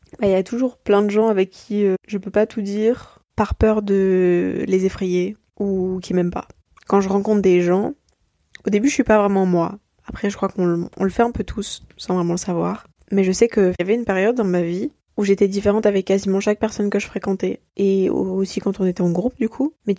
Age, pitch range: 20-39, 185-215 Hz